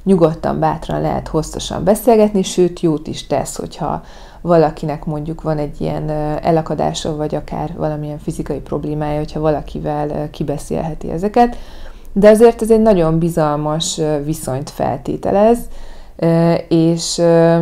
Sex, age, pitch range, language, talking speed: female, 30-49, 150-175 Hz, Hungarian, 115 wpm